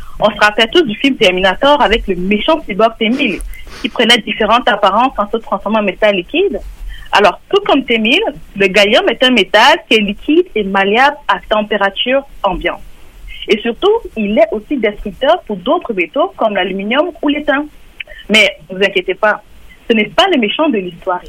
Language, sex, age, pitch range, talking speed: French, female, 40-59, 205-290 Hz, 180 wpm